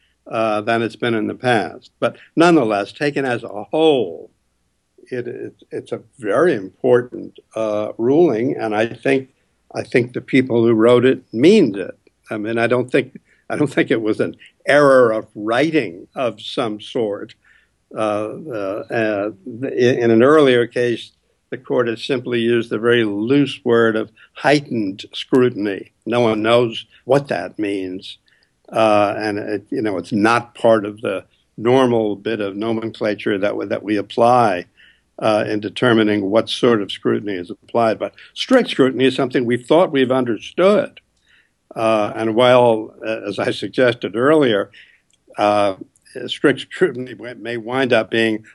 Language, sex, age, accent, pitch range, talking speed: English, male, 60-79, American, 105-125 Hz, 155 wpm